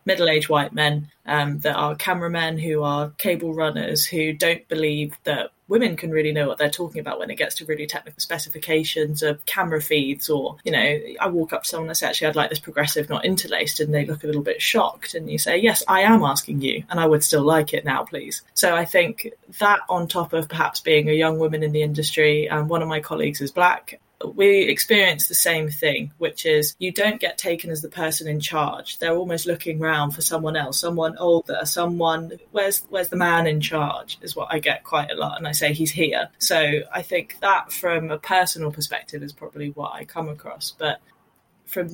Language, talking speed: English, 225 wpm